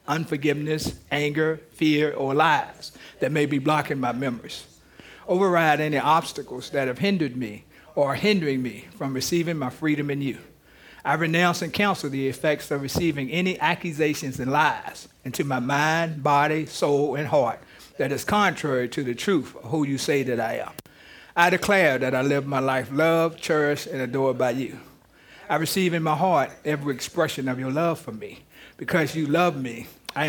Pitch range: 140-220 Hz